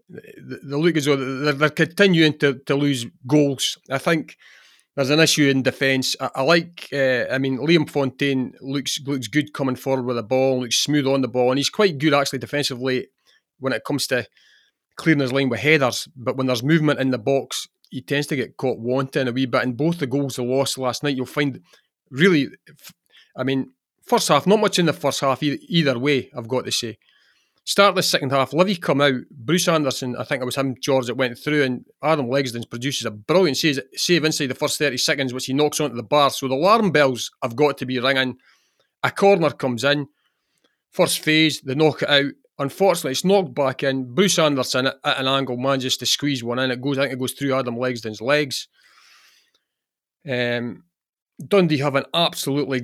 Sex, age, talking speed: male, 30-49, 210 wpm